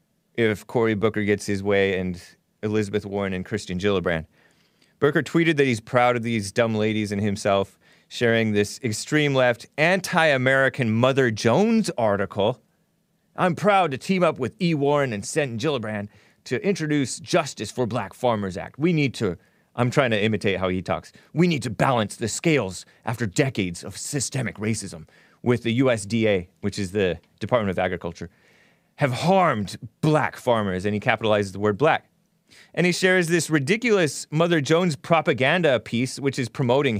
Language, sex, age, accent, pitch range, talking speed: English, male, 30-49, American, 110-165 Hz, 160 wpm